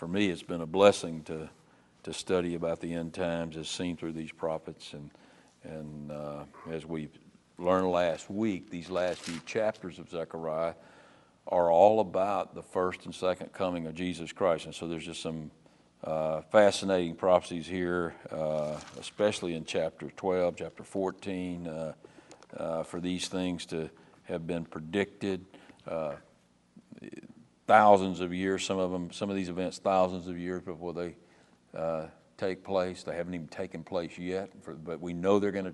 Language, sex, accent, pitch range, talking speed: English, male, American, 80-95 Hz, 165 wpm